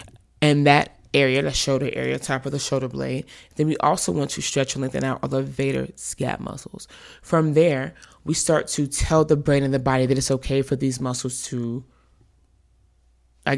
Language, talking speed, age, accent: English, 190 wpm, 20-39, American